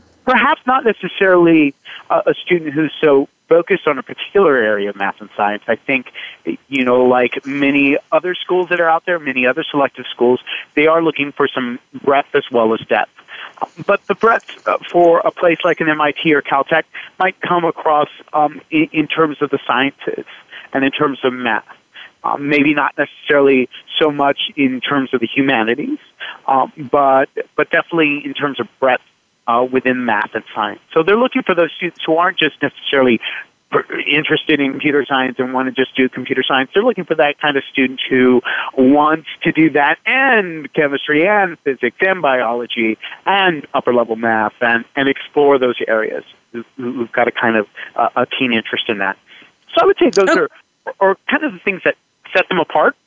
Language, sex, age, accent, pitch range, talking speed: English, male, 30-49, American, 130-170 Hz, 185 wpm